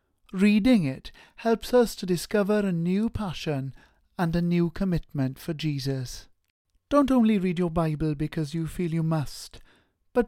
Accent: British